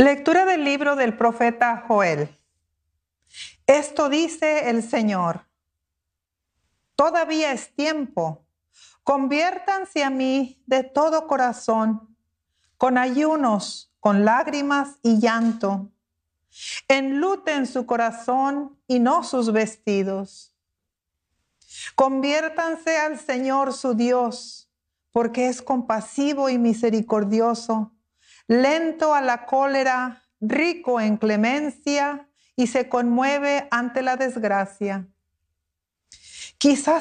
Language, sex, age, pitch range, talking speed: English, female, 50-69, 220-275 Hz, 90 wpm